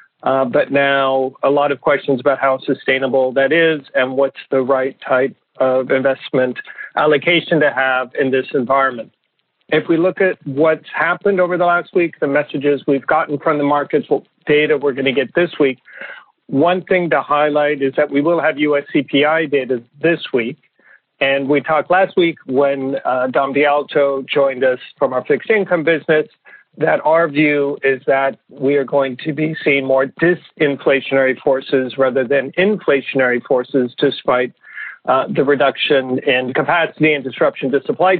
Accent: American